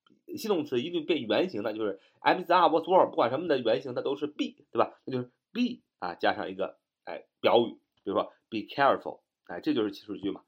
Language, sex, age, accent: Chinese, male, 30-49, native